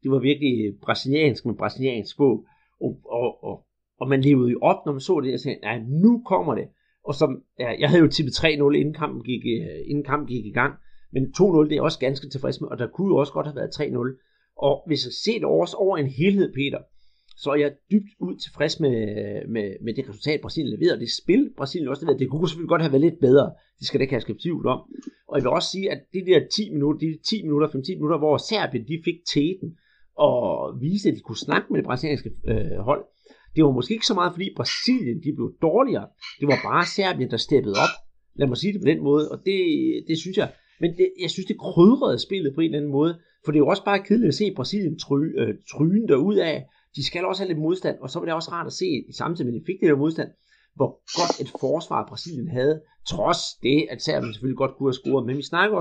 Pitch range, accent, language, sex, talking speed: 135-185 Hz, native, Danish, male, 250 wpm